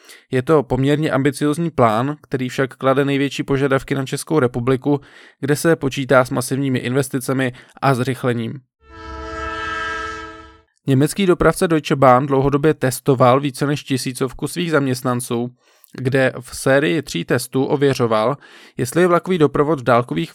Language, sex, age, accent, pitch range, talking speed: Czech, male, 20-39, native, 125-145 Hz, 130 wpm